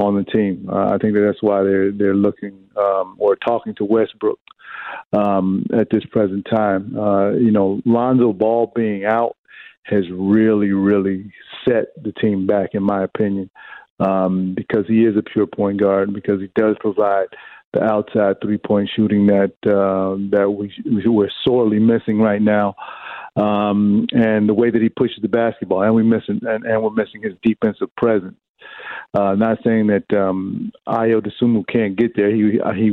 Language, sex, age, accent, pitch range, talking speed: English, male, 50-69, American, 100-115 Hz, 175 wpm